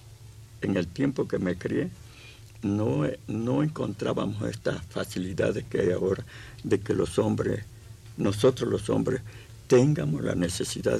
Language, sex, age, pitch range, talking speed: Spanish, male, 60-79, 95-115 Hz, 130 wpm